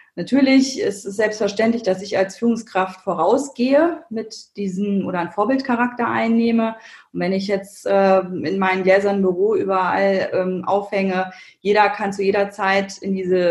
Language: German